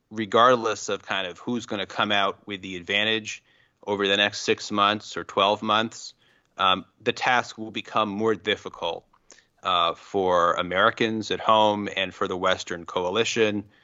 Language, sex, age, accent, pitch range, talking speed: English, male, 30-49, American, 95-115 Hz, 160 wpm